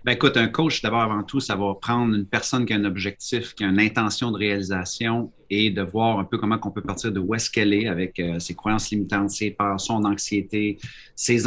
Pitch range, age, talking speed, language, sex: 100-120 Hz, 30-49, 240 wpm, French, male